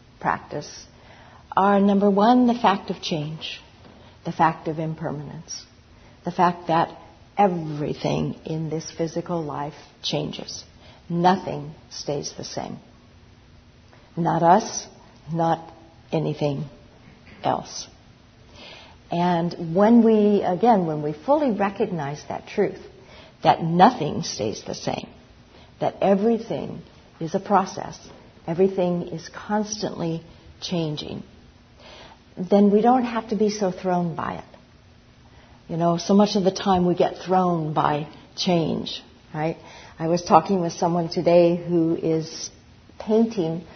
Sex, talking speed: female, 120 wpm